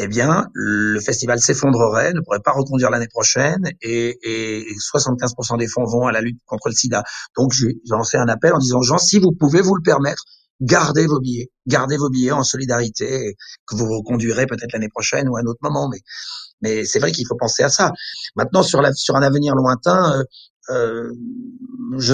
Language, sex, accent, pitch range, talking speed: French, male, French, 115-150 Hz, 205 wpm